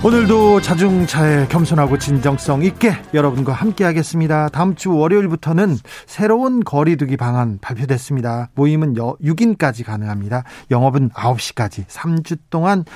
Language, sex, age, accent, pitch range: Korean, male, 40-59, native, 140-195 Hz